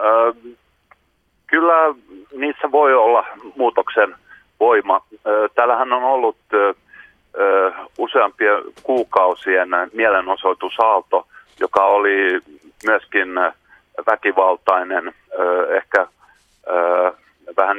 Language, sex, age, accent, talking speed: Finnish, male, 40-59, native, 60 wpm